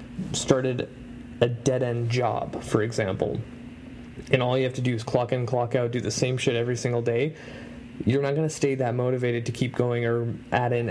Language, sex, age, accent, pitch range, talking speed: English, male, 20-39, American, 120-130 Hz, 205 wpm